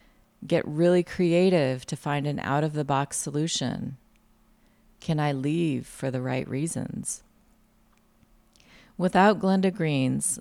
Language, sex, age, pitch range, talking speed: English, female, 40-59, 135-170 Hz, 105 wpm